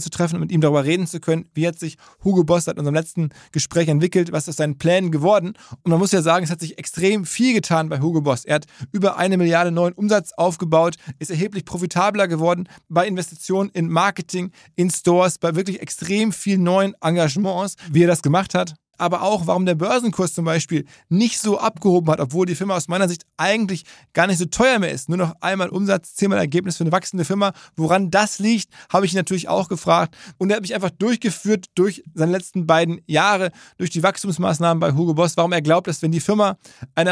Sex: male